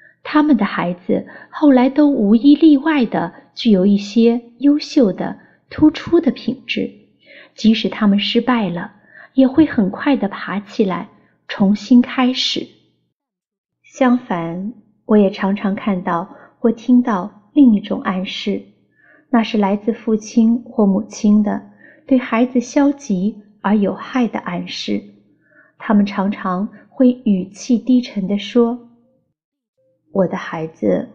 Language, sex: Chinese, female